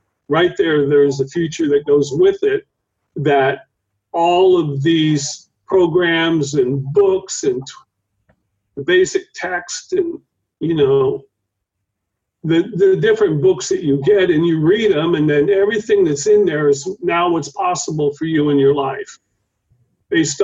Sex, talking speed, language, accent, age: male, 145 wpm, English, American, 50-69